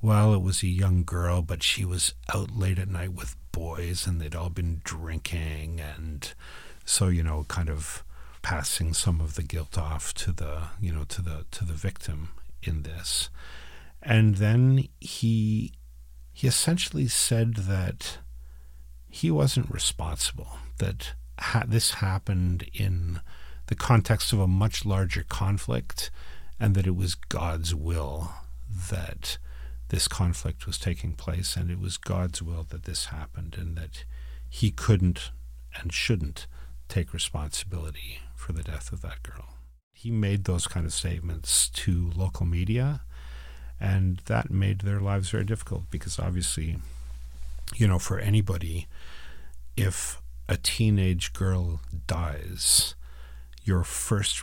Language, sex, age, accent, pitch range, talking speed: English, male, 50-69, American, 65-95 Hz, 140 wpm